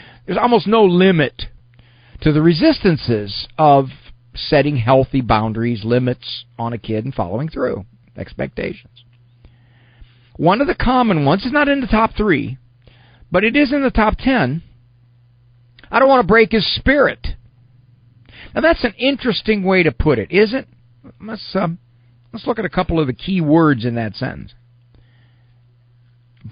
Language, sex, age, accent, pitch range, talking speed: English, male, 50-69, American, 120-175 Hz, 155 wpm